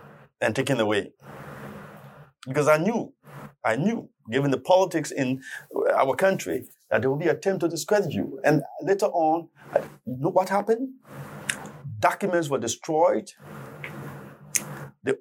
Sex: male